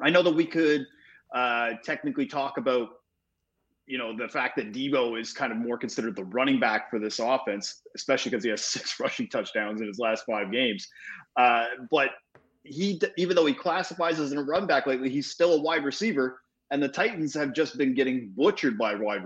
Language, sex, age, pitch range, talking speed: English, male, 30-49, 115-165 Hz, 205 wpm